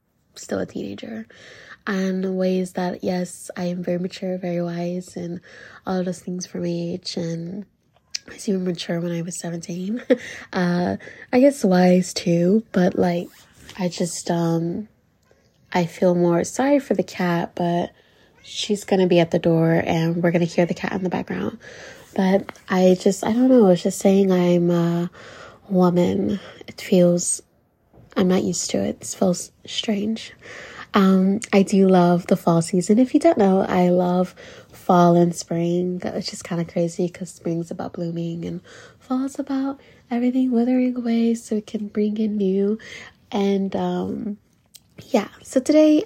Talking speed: 165 wpm